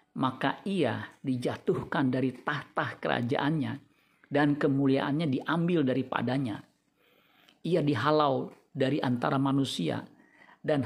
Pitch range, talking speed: 135-155 Hz, 90 wpm